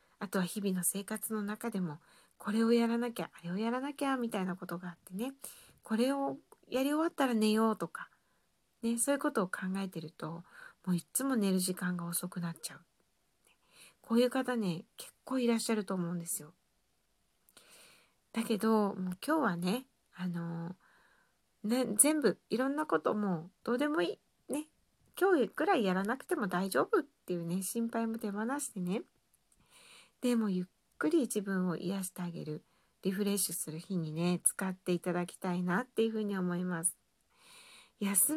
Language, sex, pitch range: Japanese, female, 180-235 Hz